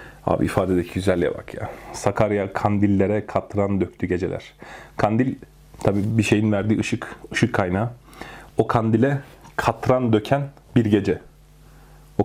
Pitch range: 100-120 Hz